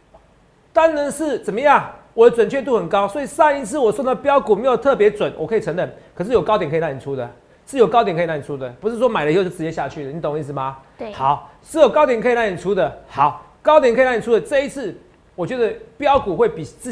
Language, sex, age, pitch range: Chinese, male, 40-59, 140-235 Hz